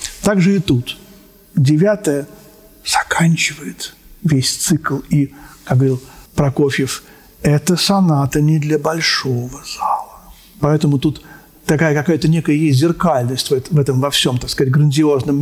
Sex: male